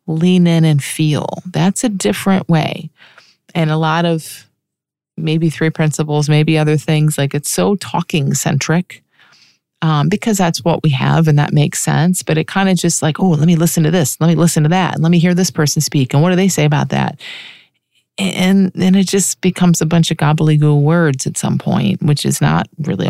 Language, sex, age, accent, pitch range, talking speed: English, female, 30-49, American, 145-175 Hz, 210 wpm